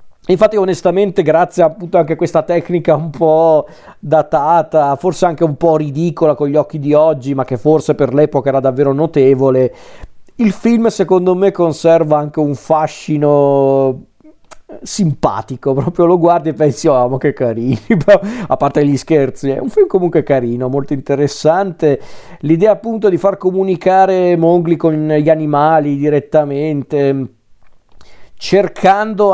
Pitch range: 135-170 Hz